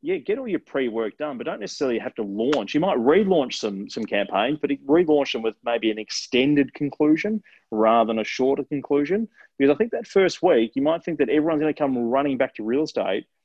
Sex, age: male, 30-49